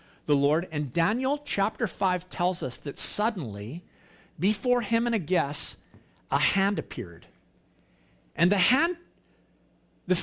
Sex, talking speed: male, 130 wpm